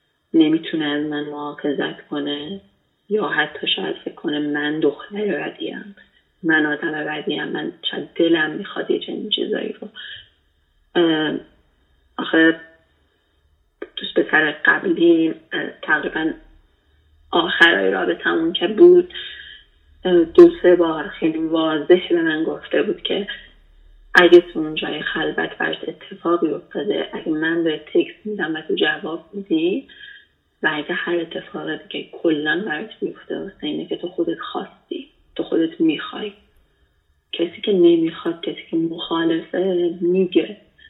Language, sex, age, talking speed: Persian, female, 30-49, 115 wpm